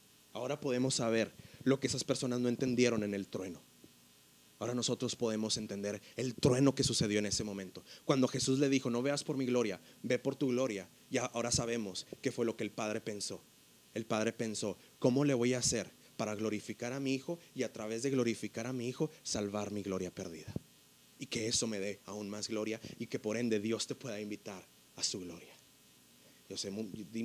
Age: 30-49